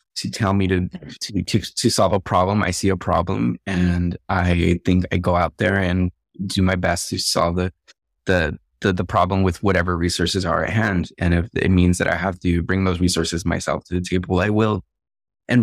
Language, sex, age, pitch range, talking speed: English, male, 20-39, 90-115 Hz, 215 wpm